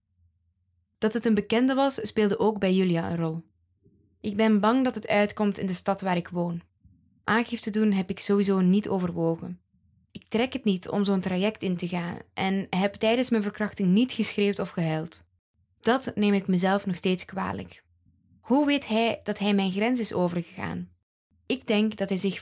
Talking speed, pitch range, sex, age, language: 185 wpm, 165-215 Hz, female, 10-29, English